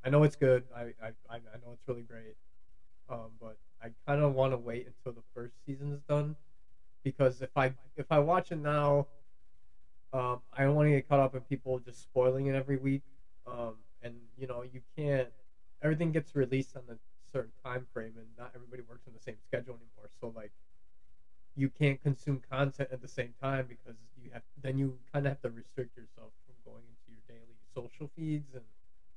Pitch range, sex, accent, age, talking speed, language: 115-145 Hz, male, American, 20-39, 205 wpm, English